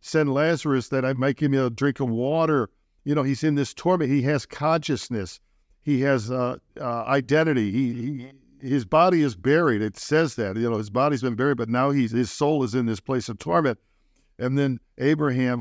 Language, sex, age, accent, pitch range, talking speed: English, male, 50-69, American, 120-150 Hz, 210 wpm